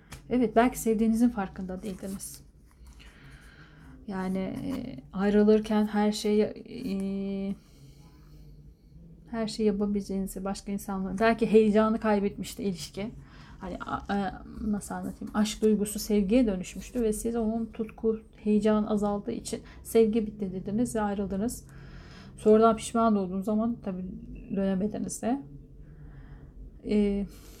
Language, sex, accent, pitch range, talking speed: Turkish, female, native, 195-225 Hz, 105 wpm